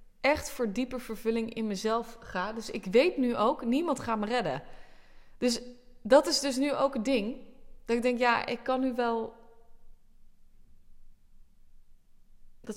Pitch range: 150-250 Hz